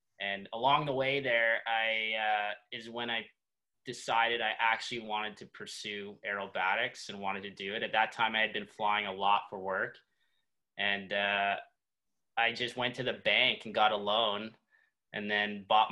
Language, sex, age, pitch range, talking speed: English, male, 20-39, 105-115 Hz, 175 wpm